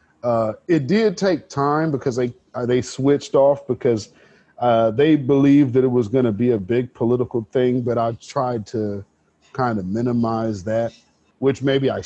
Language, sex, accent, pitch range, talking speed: English, male, American, 115-145 Hz, 180 wpm